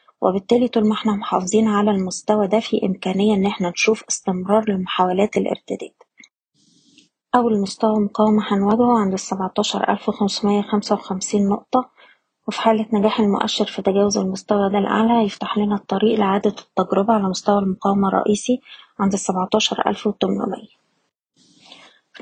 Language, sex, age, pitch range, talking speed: Arabic, female, 20-39, 200-225 Hz, 130 wpm